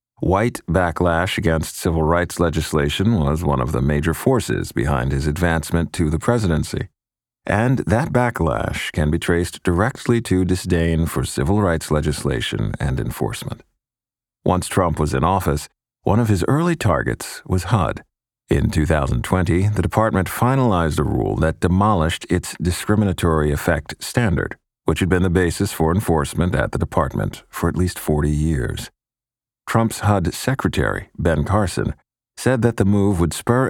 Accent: American